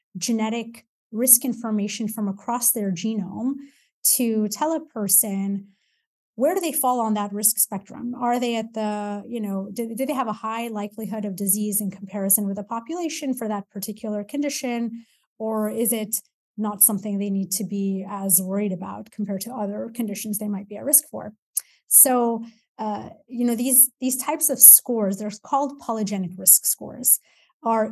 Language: English